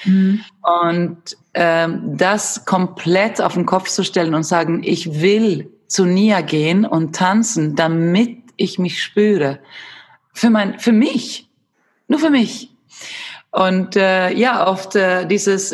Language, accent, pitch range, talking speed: German, German, 175-220 Hz, 135 wpm